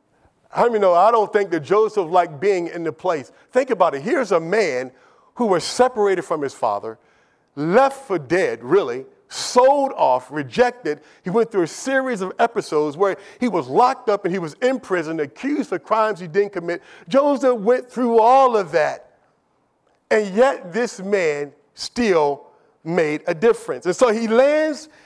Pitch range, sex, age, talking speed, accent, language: 160-230 Hz, male, 50-69, 175 wpm, American, English